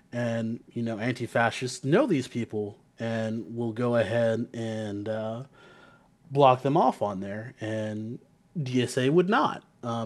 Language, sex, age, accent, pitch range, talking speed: English, male, 30-49, American, 110-130 Hz, 135 wpm